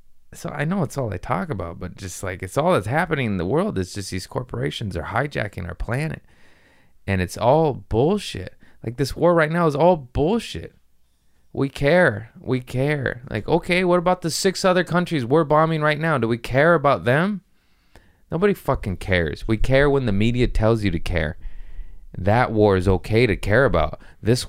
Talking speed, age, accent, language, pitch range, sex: 195 wpm, 20-39, American, English, 90-130 Hz, male